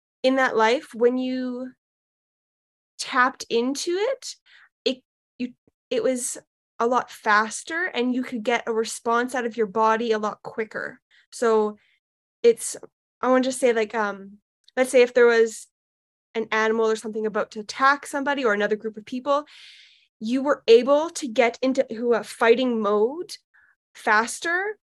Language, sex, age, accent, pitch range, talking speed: English, female, 20-39, American, 225-270 Hz, 155 wpm